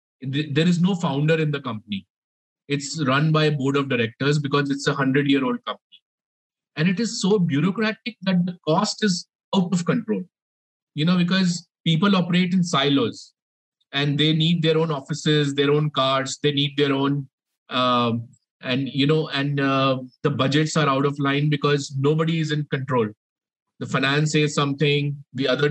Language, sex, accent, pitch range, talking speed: English, male, Indian, 135-165 Hz, 175 wpm